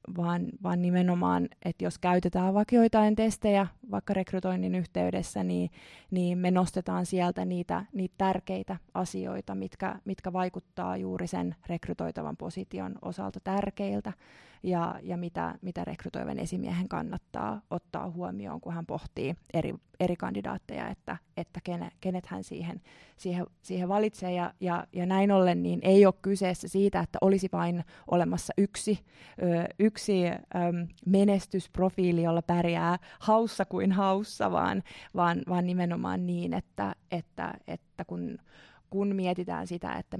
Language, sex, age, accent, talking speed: Finnish, female, 20-39, native, 130 wpm